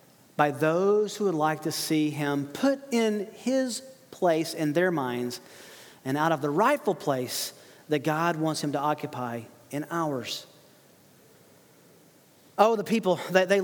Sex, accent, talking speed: male, American, 145 wpm